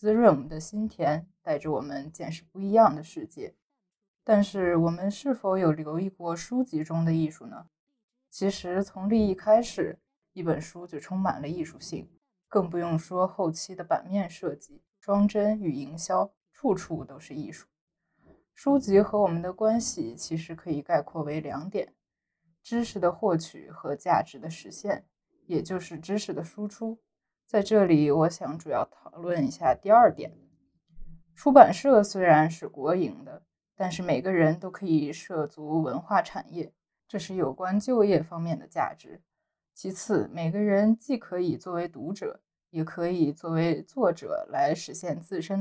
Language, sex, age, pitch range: Chinese, female, 20-39, 160-205 Hz